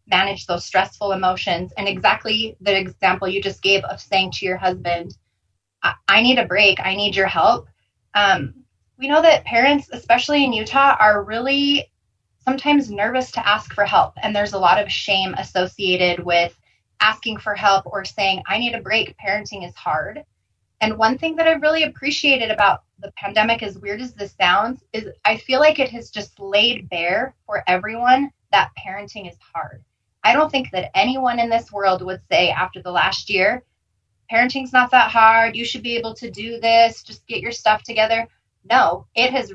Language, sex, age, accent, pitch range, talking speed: English, female, 20-39, American, 185-235 Hz, 190 wpm